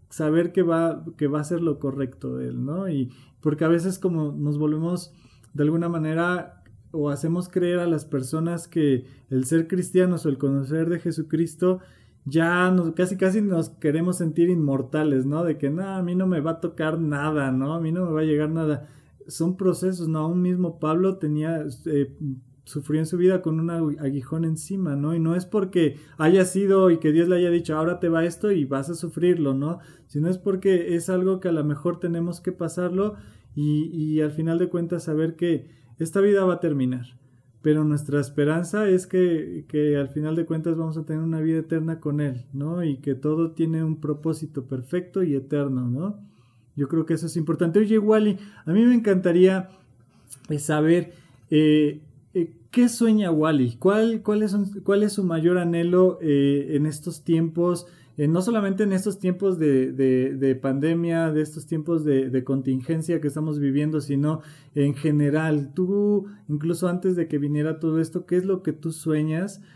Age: 20-39